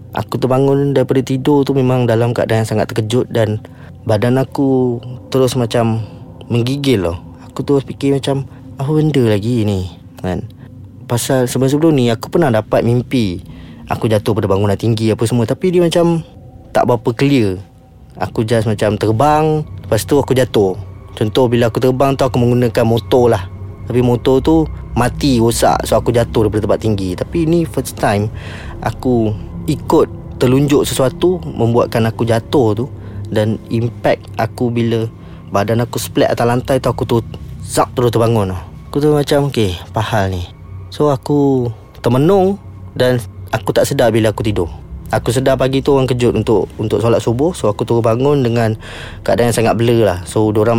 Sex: male